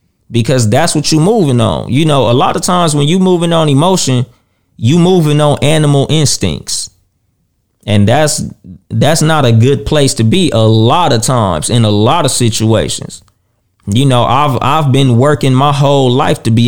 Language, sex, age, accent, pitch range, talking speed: English, male, 20-39, American, 110-145 Hz, 185 wpm